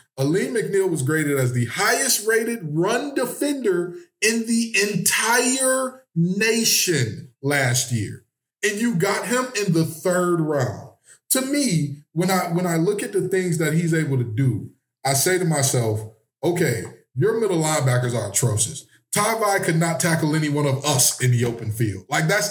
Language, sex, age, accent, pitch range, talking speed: English, male, 20-39, American, 140-180 Hz, 170 wpm